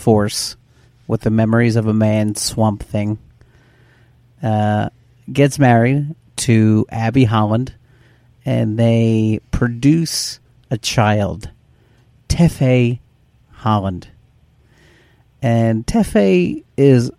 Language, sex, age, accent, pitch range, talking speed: English, male, 40-59, American, 110-125 Hz, 85 wpm